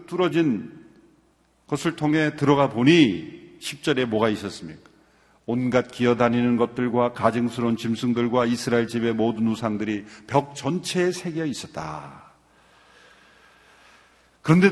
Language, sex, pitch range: Korean, male, 115-175 Hz